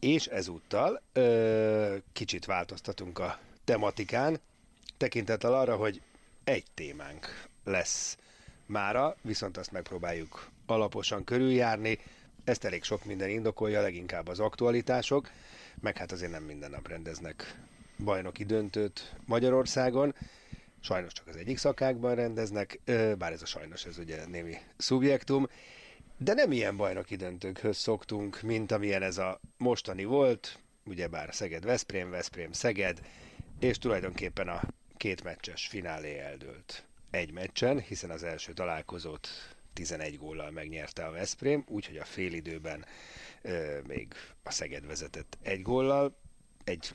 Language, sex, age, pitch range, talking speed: Hungarian, male, 30-49, 90-115 Hz, 125 wpm